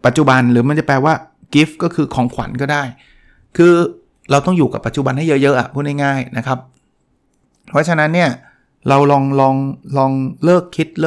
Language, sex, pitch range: Thai, male, 125-155 Hz